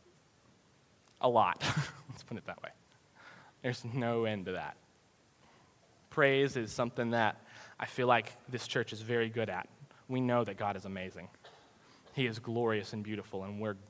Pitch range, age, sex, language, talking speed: 120-160 Hz, 20-39, male, English, 165 wpm